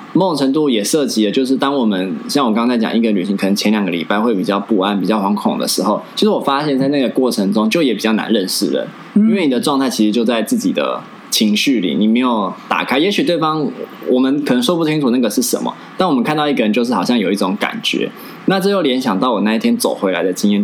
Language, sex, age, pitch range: Chinese, male, 20-39, 105-160 Hz